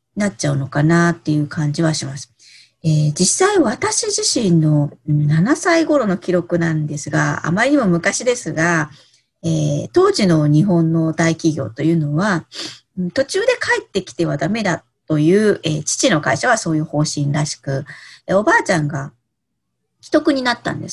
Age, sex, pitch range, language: 40-59, female, 150-235 Hz, Japanese